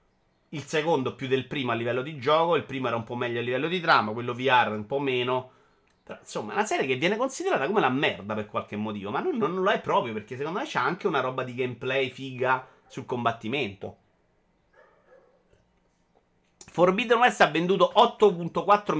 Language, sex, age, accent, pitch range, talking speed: Italian, male, 30-49, native, 120-175 Hz, 195 wpm